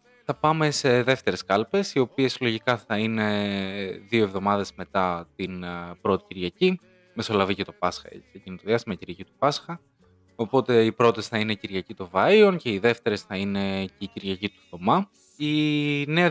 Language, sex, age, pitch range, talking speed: Greek, male, 20-39, 100-135 Hz, 175 wpm